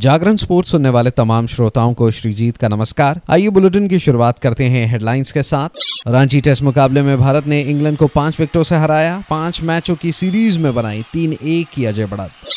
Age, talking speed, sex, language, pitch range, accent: 30-49, 200 wpm, male, Hindi, 115-145 Hz, native